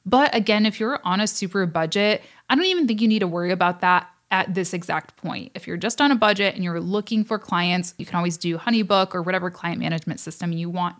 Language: English